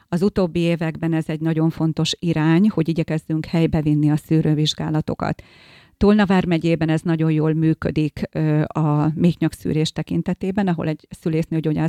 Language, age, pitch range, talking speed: Hungarian, 40-59, 155-175 Hz, 130 wpm